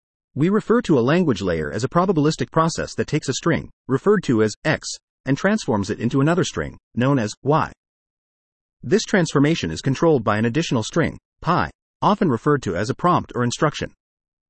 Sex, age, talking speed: male, 40-59, 180 wpm